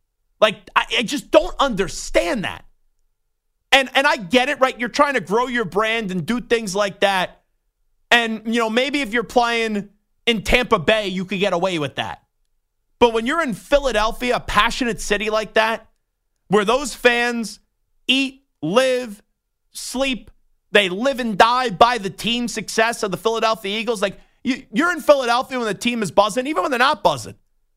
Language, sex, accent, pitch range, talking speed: English, male, American, 190-245 Hz, 175 wpm